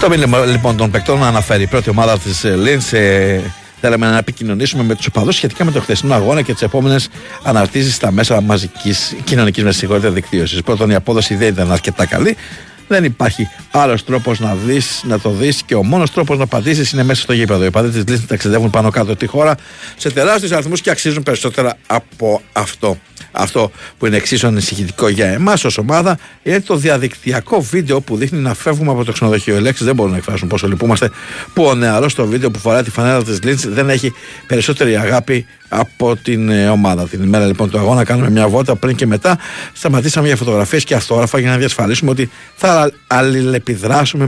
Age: 60-79